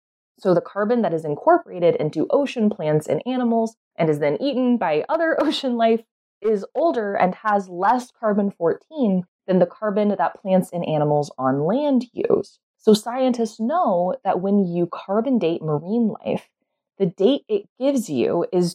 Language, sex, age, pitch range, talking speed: English, female, 20-39, 170-245 Hz, 165 wpm